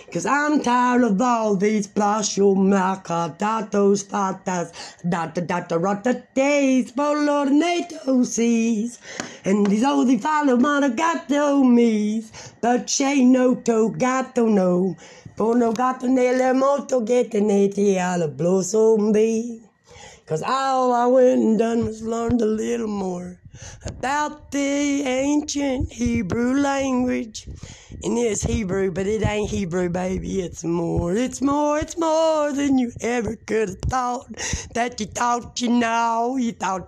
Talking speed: 115 wpm